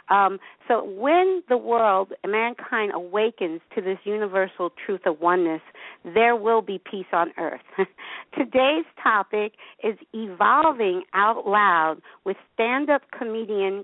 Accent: American